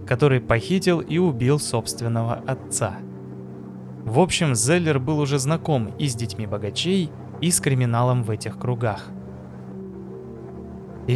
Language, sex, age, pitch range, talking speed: Russian, male, 20-39, 105-150 Hz, 125 wpm